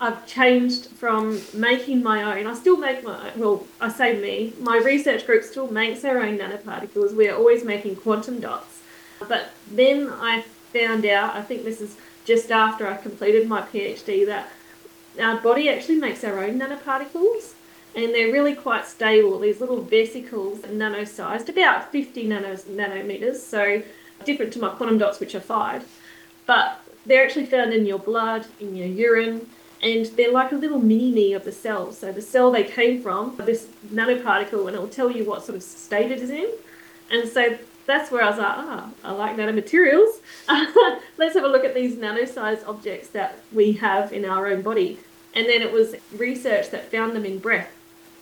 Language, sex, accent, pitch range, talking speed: English, female, Australian, 210-255 Hz, 185 wpm